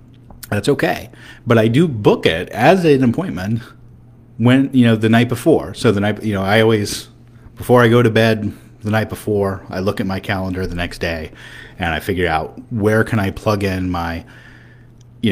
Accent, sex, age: American, male, 30-49